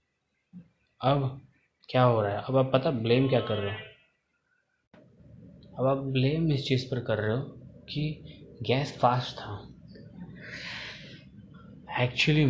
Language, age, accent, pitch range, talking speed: Hindi, 20-39, native, 105-130 Hz, 130 wpm